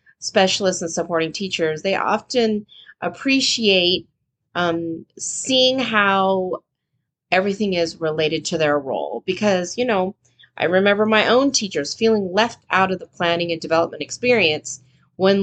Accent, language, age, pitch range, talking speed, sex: American, English, 30-49, 165-230 Hz, 130 wpm, female